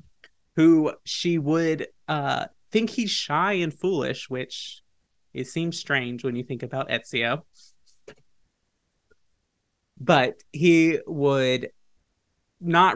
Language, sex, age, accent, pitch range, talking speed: English, male, 30-49, American, 125-155 Hz, 100 wpm